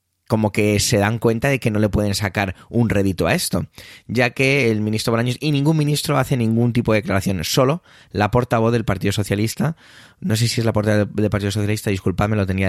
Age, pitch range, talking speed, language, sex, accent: 20-39, 95-120 Hz, 220 wpm, Spanish, male, Spanish